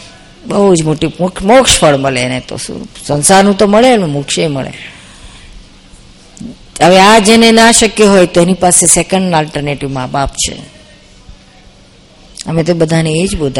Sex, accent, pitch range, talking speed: female, native, 155-200 Hz, 75 wpm